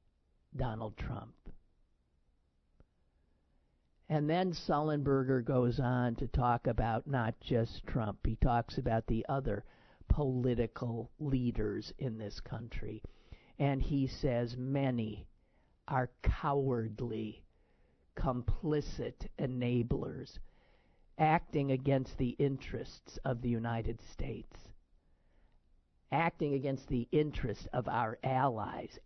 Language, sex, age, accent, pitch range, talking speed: English, male, 50-69, American, 105-135 Hz, 95 wpm